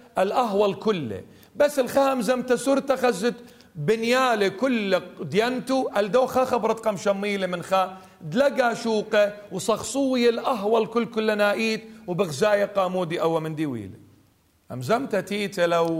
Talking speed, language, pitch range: 115 wpm, English, 135-205 Hz